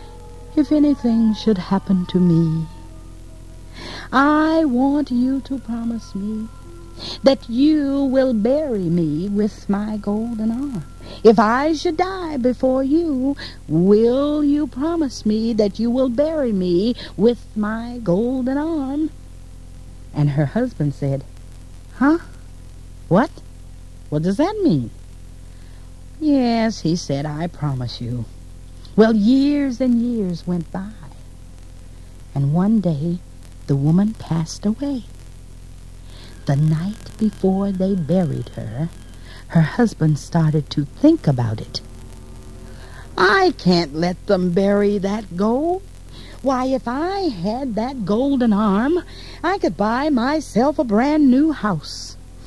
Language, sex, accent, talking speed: English, female, American, 120 wpm